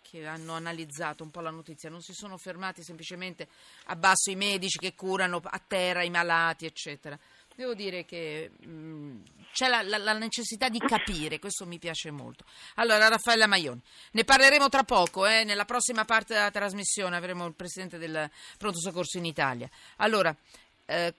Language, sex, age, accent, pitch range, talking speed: Italian, female, 40-59, native, 160-215 Hz, 175 wpm